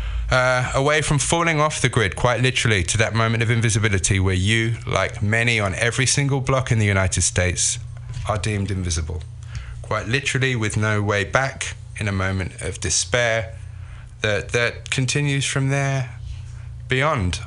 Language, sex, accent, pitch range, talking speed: English, male, British, 105-130 Hz, 160 wpm